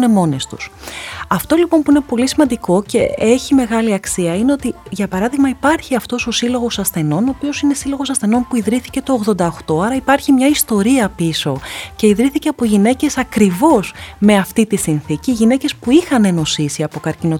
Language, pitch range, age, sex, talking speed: Greek, 180-255 Hz, 30-49, female, 165 wpm